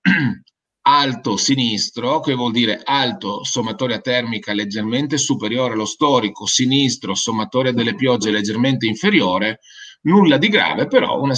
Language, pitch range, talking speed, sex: Italian, 105-140 Hz, 120 wpm, male